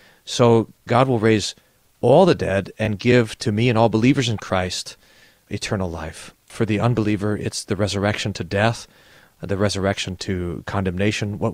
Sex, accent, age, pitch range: male, American, 40-59, 100-125 Hz